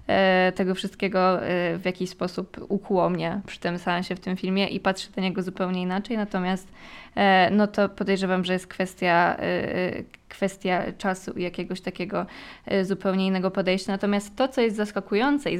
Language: Polish